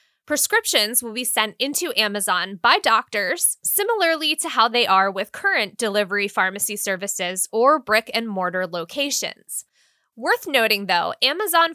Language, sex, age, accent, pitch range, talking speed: English, female, 20-39, American, 205-300 Hz, 130 wpm